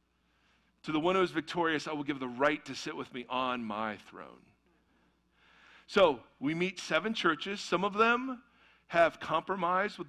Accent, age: American, 40-59